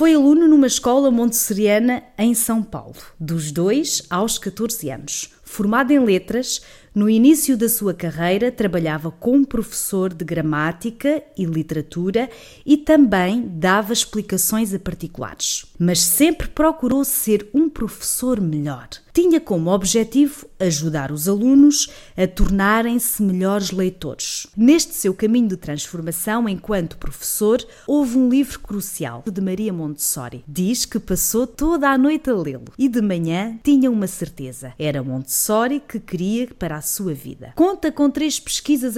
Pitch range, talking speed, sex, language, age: 175-250 Hz, 140 wpm, female, Portuguese, 20-39